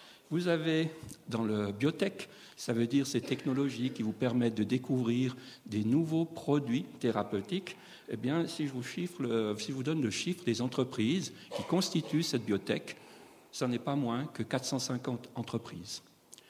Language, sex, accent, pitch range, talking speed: French, male, French, 115-150 Hz, 165 wpm